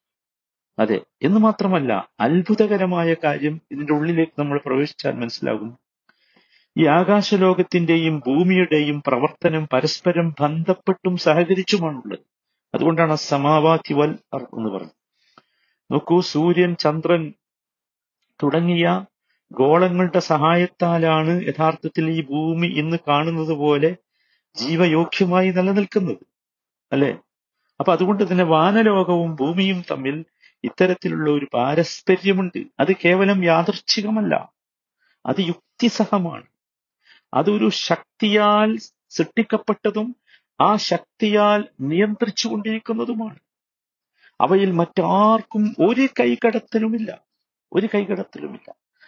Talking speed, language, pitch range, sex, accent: 80 wpm, Malayalam, 160-215 Hz, male, native